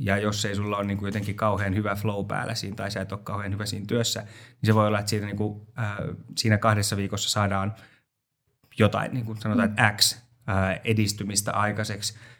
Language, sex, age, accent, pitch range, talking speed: Finnish, male, 20-39, native, 100-115 Hz, 165 wpm